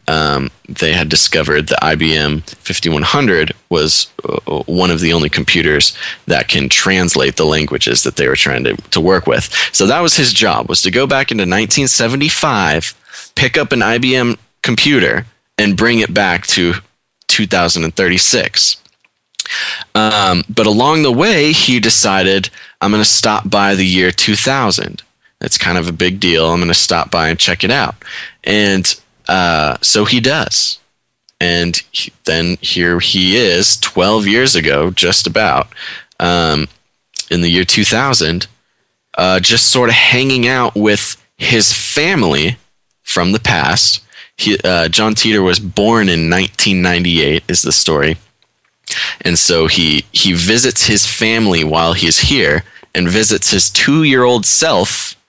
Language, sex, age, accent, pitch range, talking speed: English, male, 20-39, American, 85-115 Hz, 150 wpm